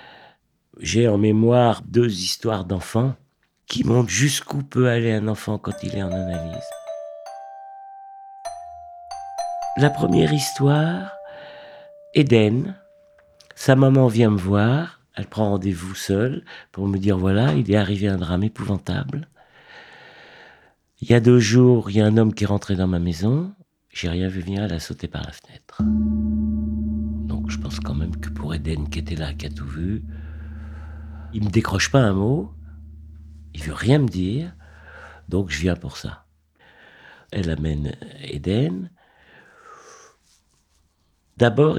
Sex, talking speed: male, 150 wpm